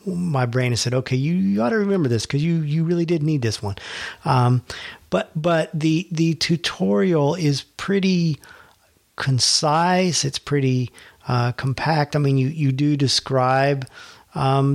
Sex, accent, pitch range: male, American, 125-145 Hz